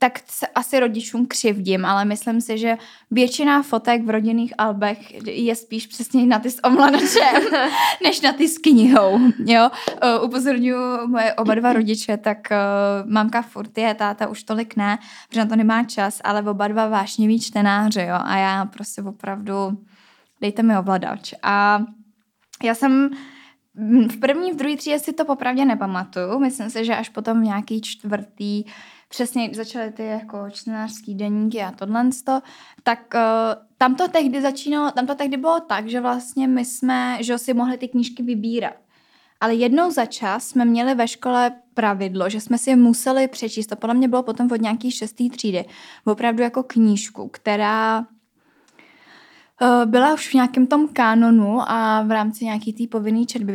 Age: 10-29